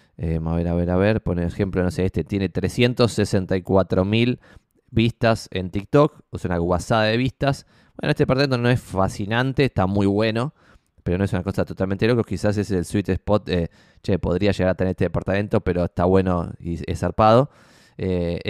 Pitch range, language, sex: 95-125 Hz, Spanish, male